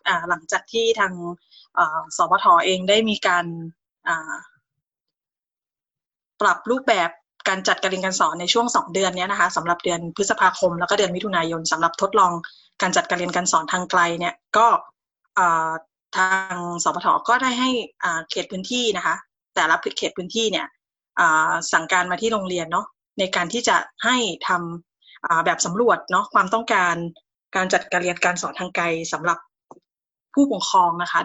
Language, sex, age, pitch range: Thai, female, 20-39, 175-225 Hz